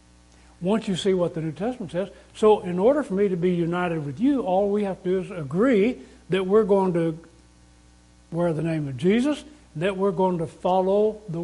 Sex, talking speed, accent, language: male, 210 wpm, American, English